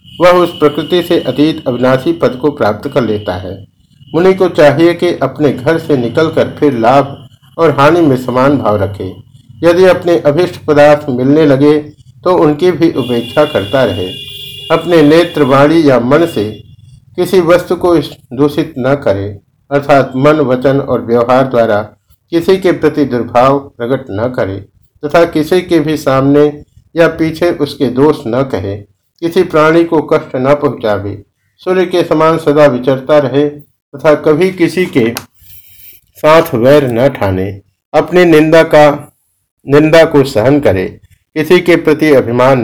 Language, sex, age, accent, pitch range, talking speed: Hindi, male, 50-69, native, 120-155 Hz, 150 wpm